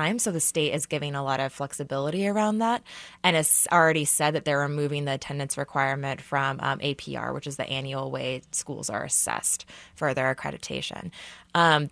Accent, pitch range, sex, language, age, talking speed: American, 135-160 Hz, female, English, 20-39, 180 wpm